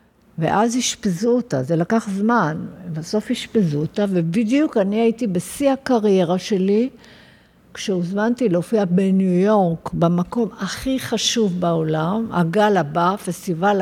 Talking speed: 115 wpm